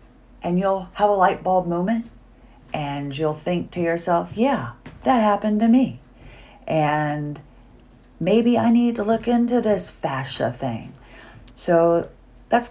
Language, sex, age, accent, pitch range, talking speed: English, female, 40-59, American, 125-180 Hz, 135 wpm